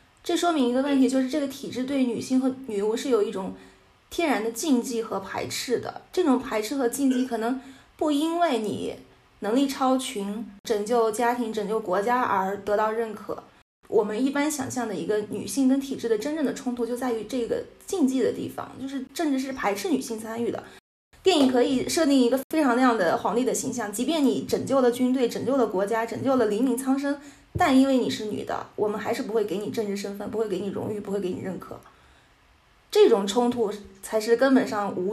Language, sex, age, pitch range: Chinese, female, 20-39, 220-265 Hz